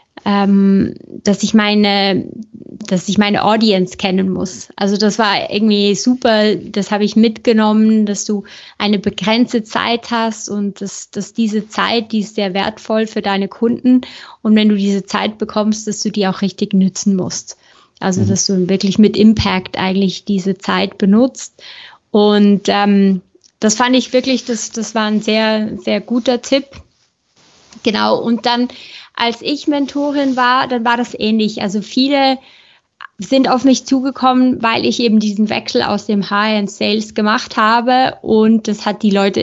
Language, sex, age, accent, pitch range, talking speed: German, female, 20-39, German, 200-235 Hz, 165 wpm